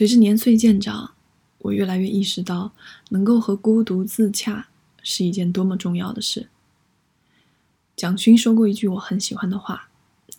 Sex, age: female, 20-39